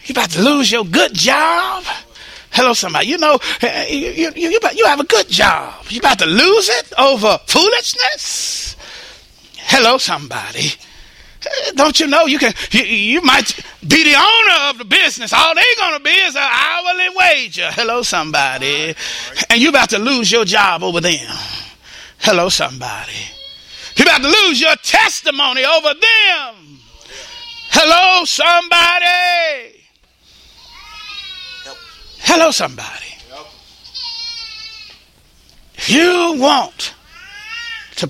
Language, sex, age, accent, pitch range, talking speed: English, male, 30-49, American, 230-360 Hz, 125 wpm